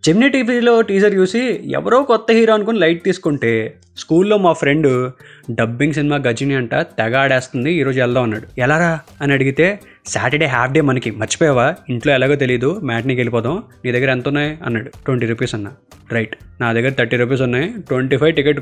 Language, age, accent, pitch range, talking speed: Telugu, 20-39, native, 130-200 Hz, 170 wpm